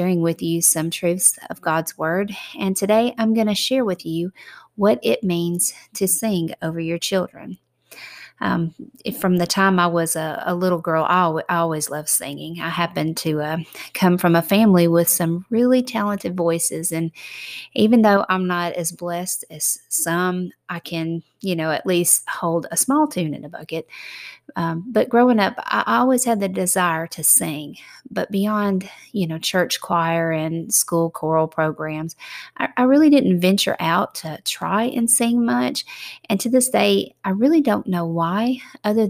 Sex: female